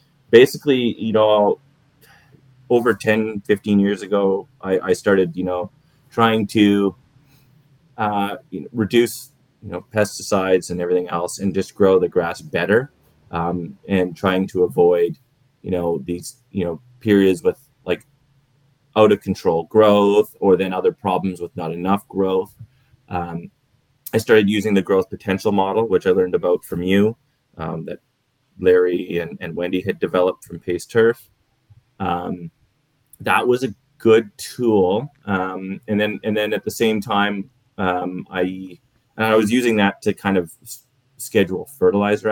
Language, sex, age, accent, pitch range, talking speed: English, male, 20-39, American, 90-125 Hz, 155 wpm